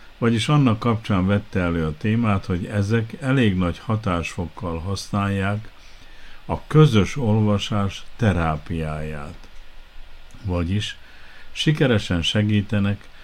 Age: 50-69